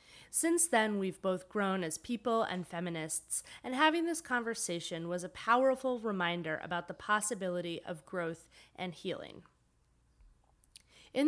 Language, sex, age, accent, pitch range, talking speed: English, female, 30-49, American, 170-215 Hz, 135 wpm